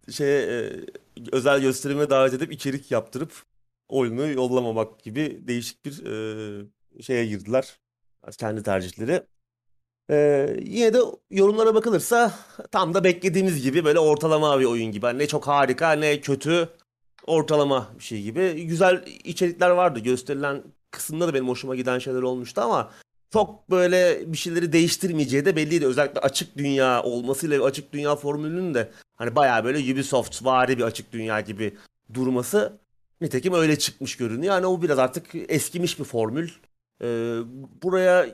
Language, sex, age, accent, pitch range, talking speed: Turkish, male, 30-49, native, 125-175 Hz, 140 wpm